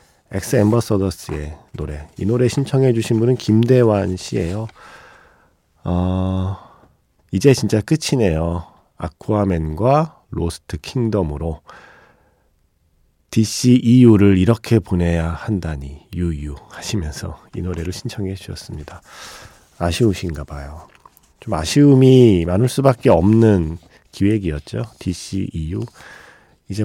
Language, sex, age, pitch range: Korean, male, 40-59, 90-125 Hz